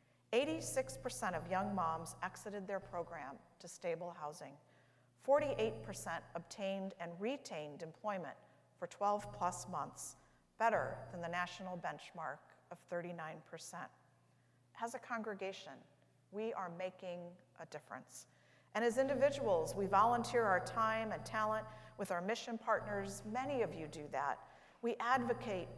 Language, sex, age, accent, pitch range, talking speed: English, female, 50-69, American, 170-220 Hz, 120 wpm